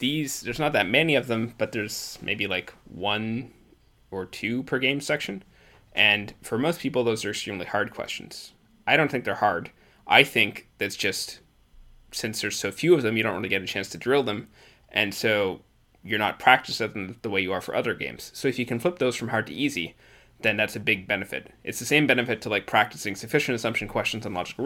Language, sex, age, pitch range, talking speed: English, male, 20-39, 100-120 Hz, 220 wpm